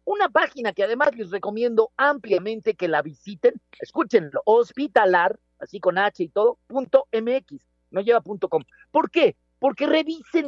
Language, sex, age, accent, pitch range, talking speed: Spanish, male, 50-69, Mexican, 190-280 Hz, 155 wpm